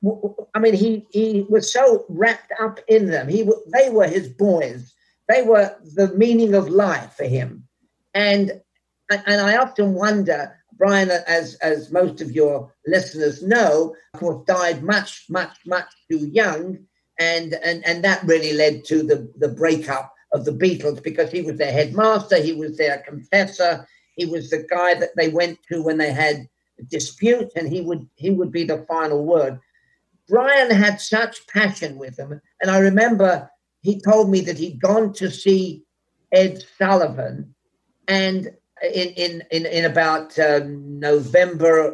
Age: 50-69